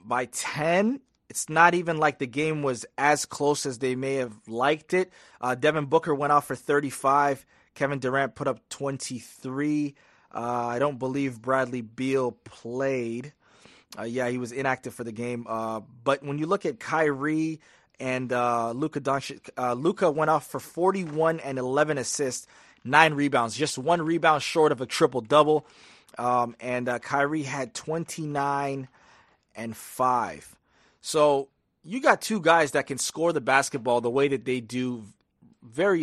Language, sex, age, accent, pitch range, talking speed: English, male, 30-49, American, 120-150 Hz, 160 wpm